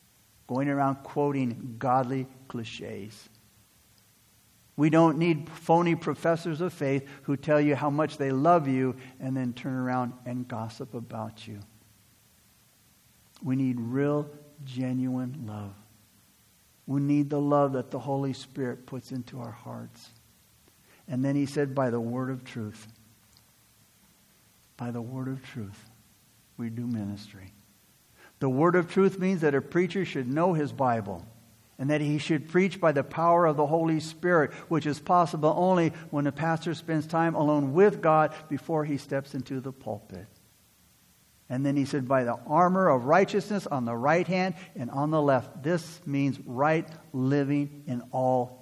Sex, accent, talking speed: male, American, 155 wpm